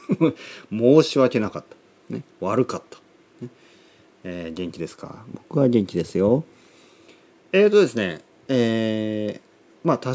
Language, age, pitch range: Japanese, 40-59, 100-160 Hz